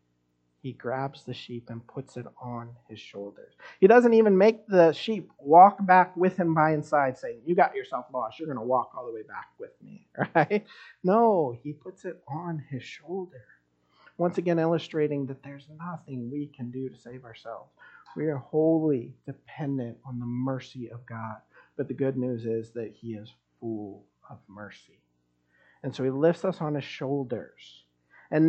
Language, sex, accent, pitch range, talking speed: English, male, American, 120-165 Hz, 180 wpm